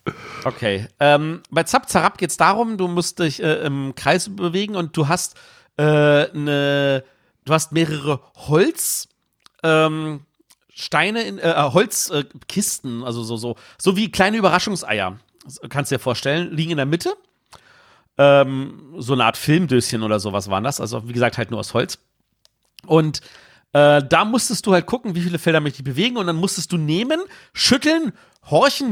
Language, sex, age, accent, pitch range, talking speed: German, male, 40-59, German, 135-180 Hz, 170 wpm